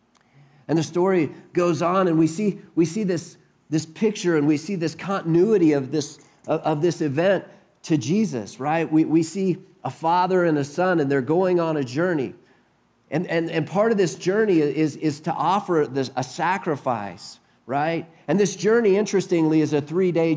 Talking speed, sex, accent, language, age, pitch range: 185 wpm, male, American, English, 40-59, 150-185 Hz